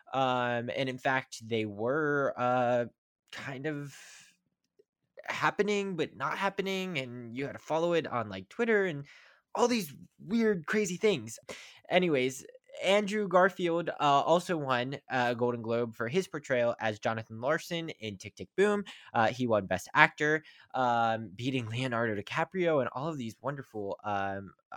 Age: 20-39